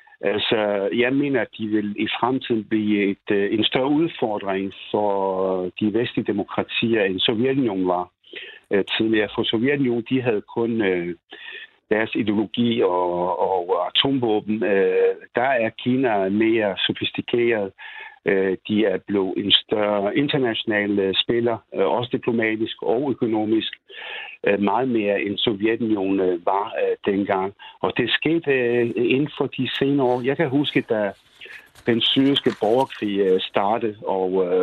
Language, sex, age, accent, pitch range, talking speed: Danish, male, 60-79, native, 100-130 Hz, 120 wpm